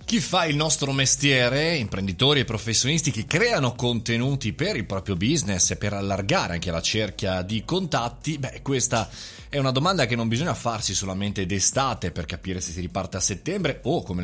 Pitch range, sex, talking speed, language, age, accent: 95-135 Hz, male, 180 wpm, Italian, 30-49, native